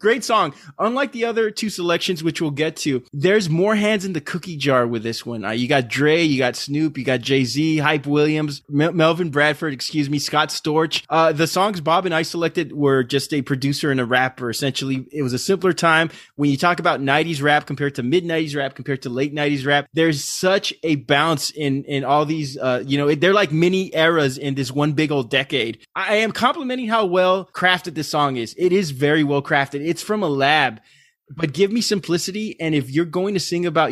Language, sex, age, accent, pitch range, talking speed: English, male, 20-39, American, 135-170 Hz, 220 wpm